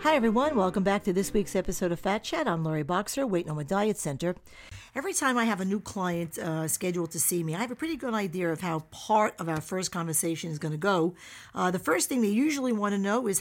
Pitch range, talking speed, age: 175-225 Hz, 250 wpm, 50-69